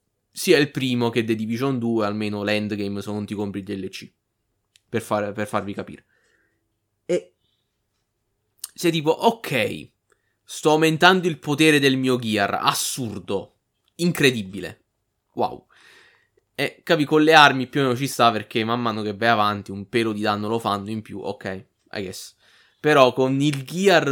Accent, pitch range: native, 110-140 Hz